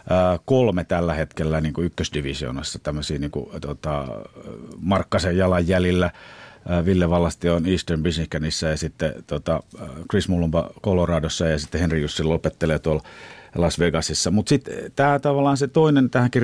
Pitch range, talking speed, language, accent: 85-115 Hz, 135 wpm, Finnish, native